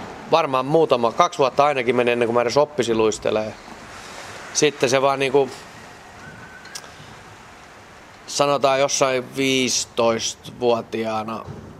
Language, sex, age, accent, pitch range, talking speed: Finnish, male, 30-49, native, 110-125 Hz, 90 wpm